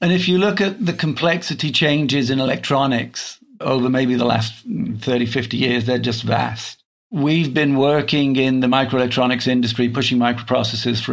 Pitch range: 120-140 Hz